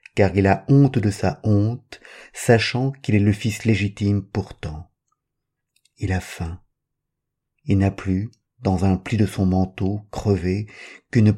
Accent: French